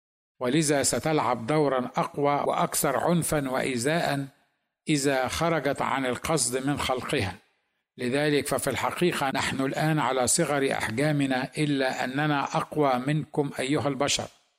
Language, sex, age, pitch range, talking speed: Arabic, male, 50-69, 125-150 Hz, 110 wpm